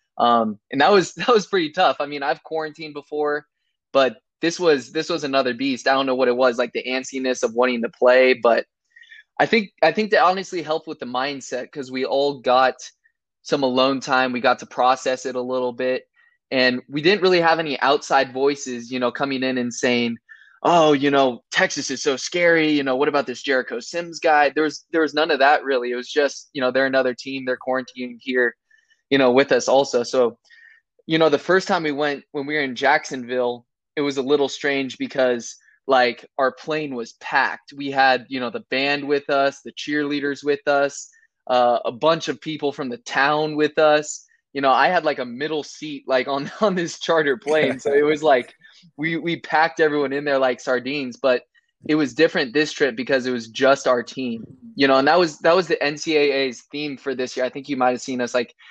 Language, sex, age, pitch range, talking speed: English, male, 20-39, 130-160 Hz, 220 wpm